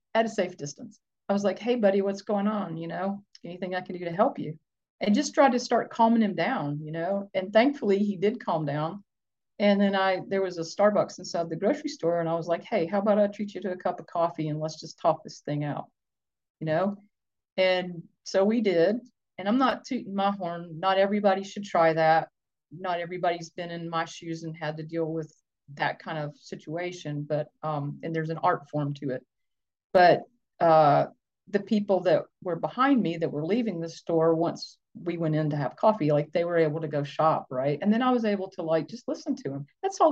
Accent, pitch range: American, 155-205 Hz